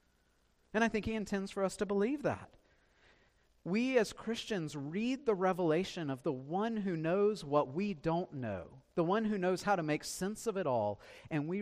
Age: 40-59